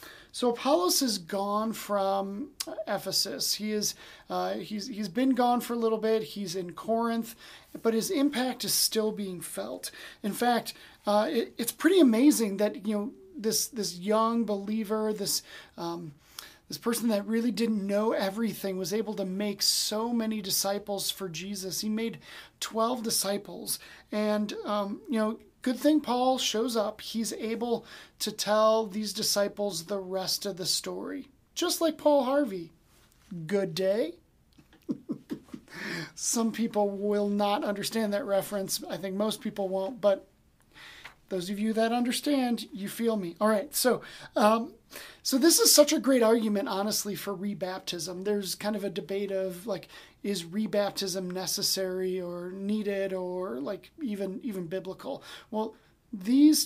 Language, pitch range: English, 195-230 Hz